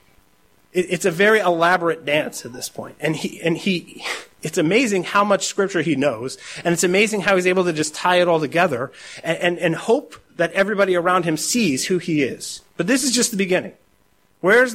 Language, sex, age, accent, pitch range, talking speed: English, male, 30-49, American, 155-205 Hz, 205 wpm